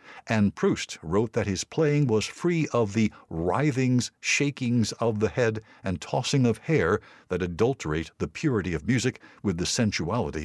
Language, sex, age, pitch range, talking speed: English, male, 60-79, 95-140 Hz, 160 wpm